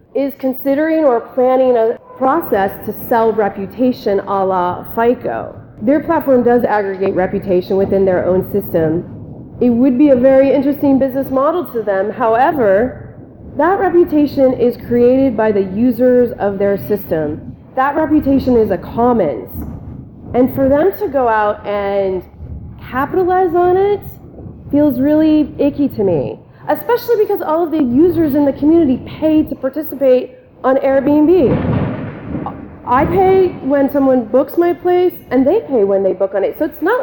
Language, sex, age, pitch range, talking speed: English, female, 30-49, 210-290 Hz, 150 wpm